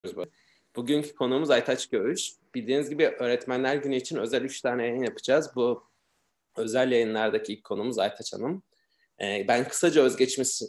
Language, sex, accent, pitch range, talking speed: Turkish, male, native, 115-140 Hz, 140 wpm